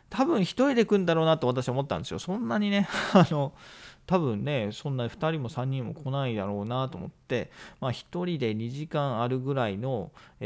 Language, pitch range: Japanese, 115-165 Hz